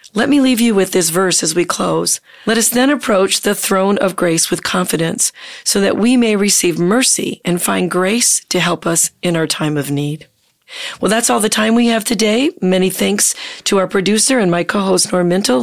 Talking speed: 210 wpm